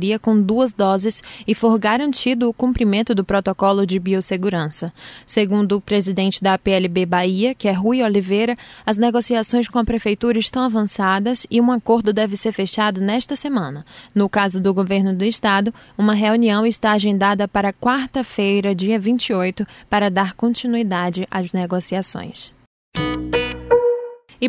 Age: 10-29